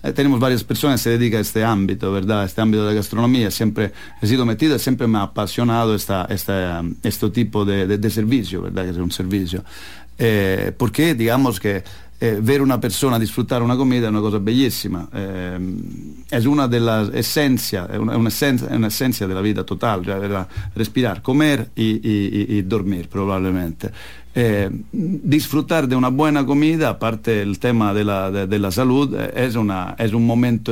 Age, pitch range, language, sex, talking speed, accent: 50-69, 100-125 Hz, English, male, 170 wpm, Italian